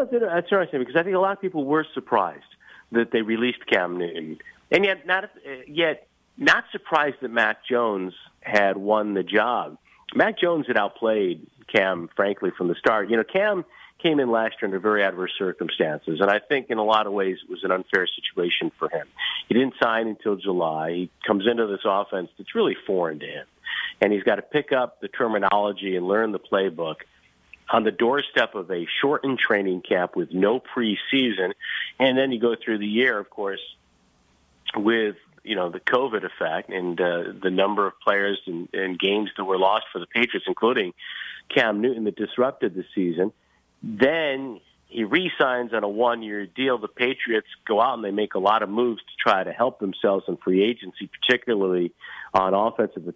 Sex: male